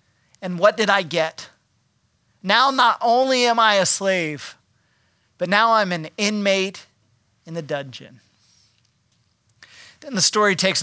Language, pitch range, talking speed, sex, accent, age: English, 170-245 Hz, 135 wpm, male, American, 40-59